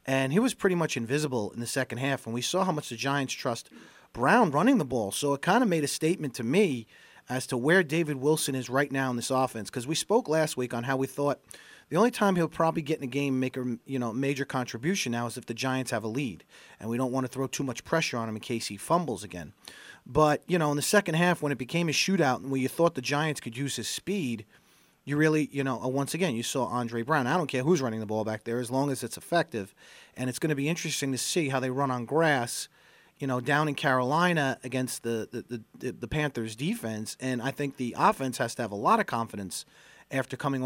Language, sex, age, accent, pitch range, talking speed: English, male, 40-59, American, 125-155 Hz, 260 wpm